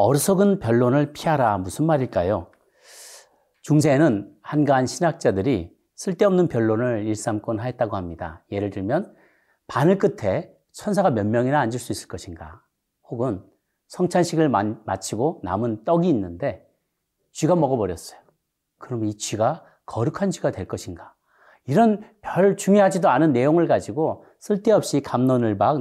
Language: Korean